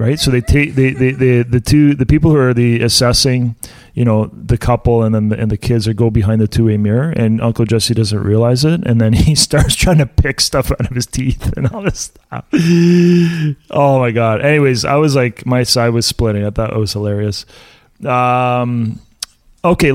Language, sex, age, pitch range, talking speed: English, male, 30-49, 115-145 Hz, 215 wpm